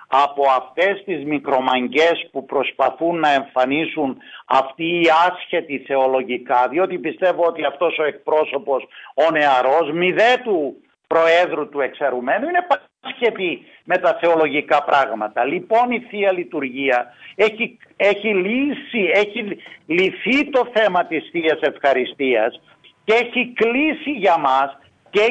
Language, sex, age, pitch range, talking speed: Greek, male, 60-79, 150-225 Hz, 120 wpm